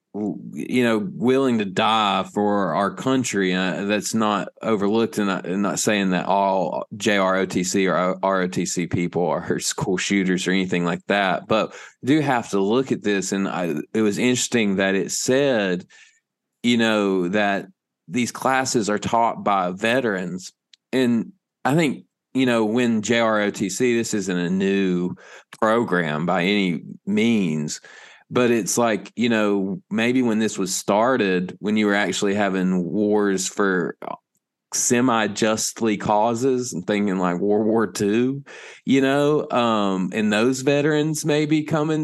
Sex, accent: male, American